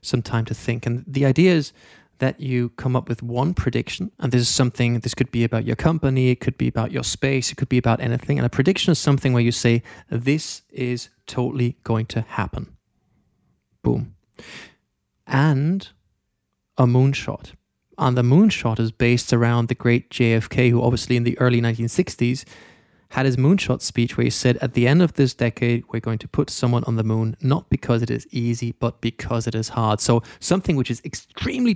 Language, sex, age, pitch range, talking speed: English, male, 20-39, 115-135 Hz, 200 wpm